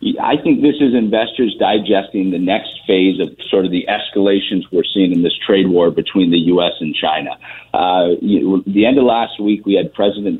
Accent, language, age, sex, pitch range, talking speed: American, English, 50-69, male, 95-110 Hz, 200 wpm